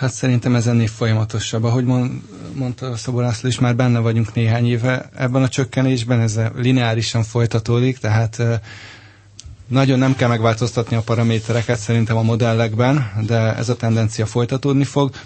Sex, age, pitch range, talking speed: male, 20-39, 110-125 Hz, 140 wpm